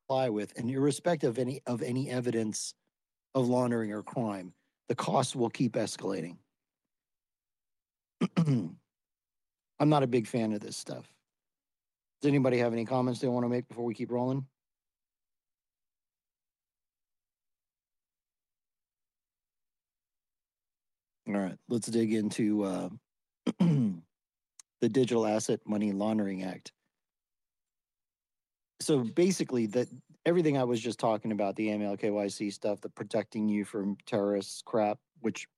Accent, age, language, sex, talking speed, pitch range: American, 40-59, English, male, 115 wpm, 105-130 Hz